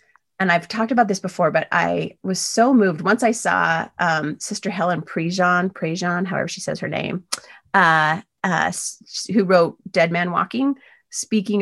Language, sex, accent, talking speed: English, female, American, 170 wpm